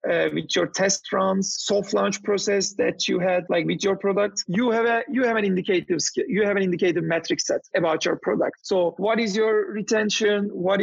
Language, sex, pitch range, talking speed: English, male, 185-220 Hz, 210 wpm